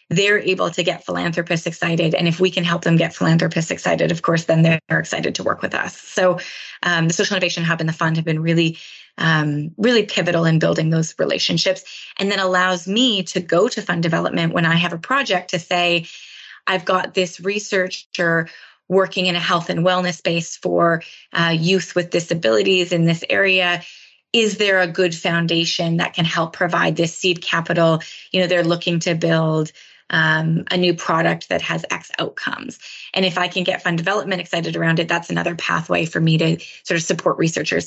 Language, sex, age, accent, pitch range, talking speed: English, female, 20-39, American, 165-185 Hz, 195 wpm